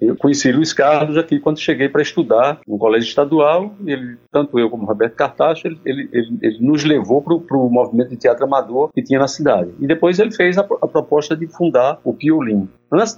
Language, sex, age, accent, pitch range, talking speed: Portuguese, male, 50-69, Brazilian, 115-170 Hz, 215 wpm